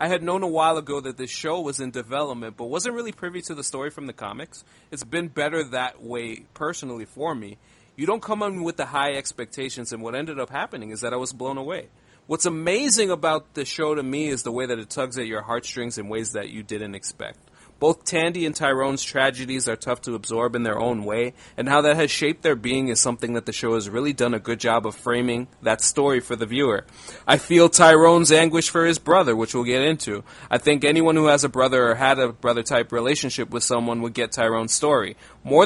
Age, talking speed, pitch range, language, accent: 30-49, 235 wpm, 120-160 Hz, English, American